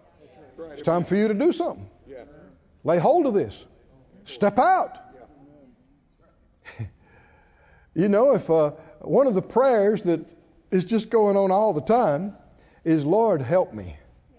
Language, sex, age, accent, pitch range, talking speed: English, male, 60-79, American, 150-200 Hz, 140 wpm